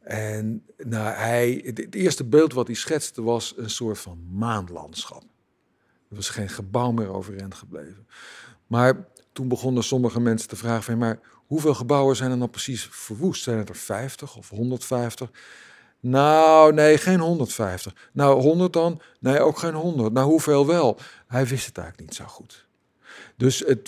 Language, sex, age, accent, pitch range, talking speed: Dutch, male, 50-69, Dutch, 110-135 Hz, 160 wpm